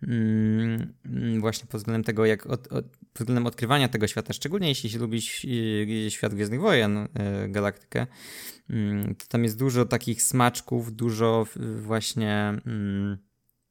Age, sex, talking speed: 20-39, male, 125 wpm